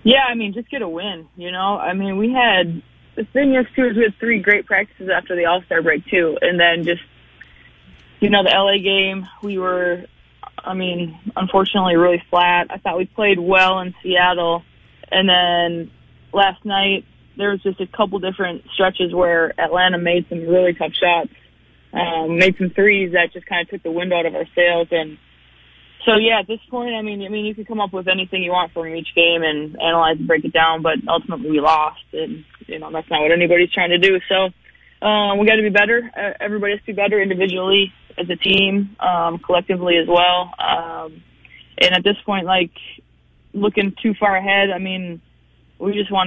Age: 20-39